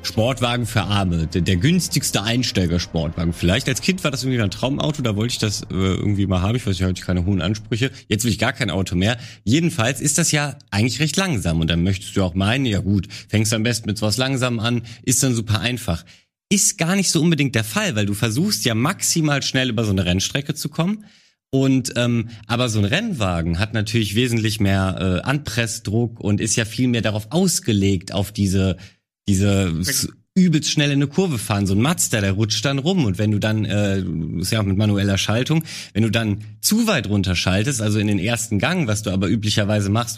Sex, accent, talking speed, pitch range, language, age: male, German, 220 wpm, 100-135 Hz, German, 30-49